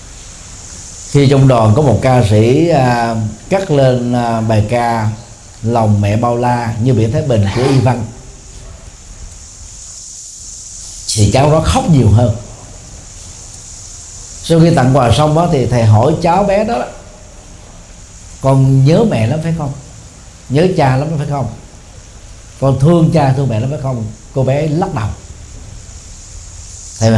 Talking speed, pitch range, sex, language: 145 wpm, 100-150 Hz, male, Vietnamese